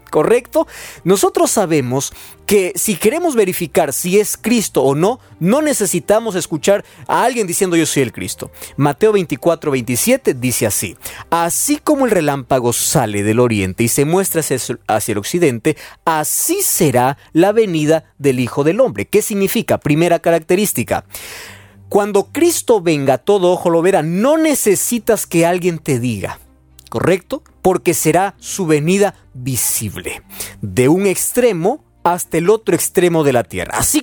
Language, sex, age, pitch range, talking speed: Spanish, male, 40-59, 125-200 Hz, 145 wpm